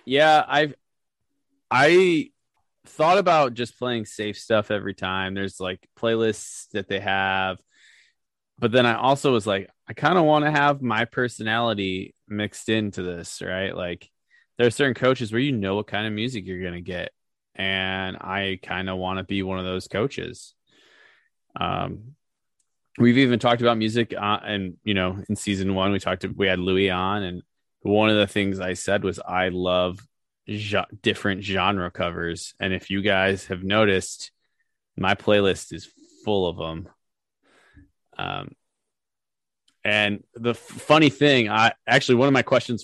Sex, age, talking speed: male, 20-39, 165 wpm